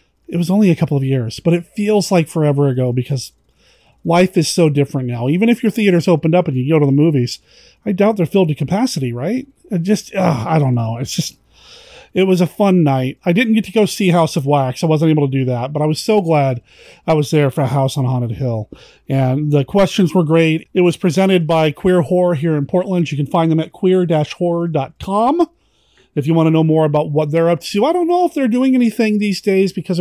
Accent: American